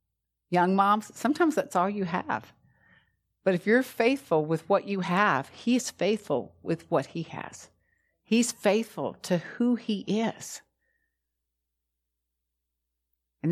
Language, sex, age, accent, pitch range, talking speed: English, female, 60-79, American, 140-180 Hz, 130 wpm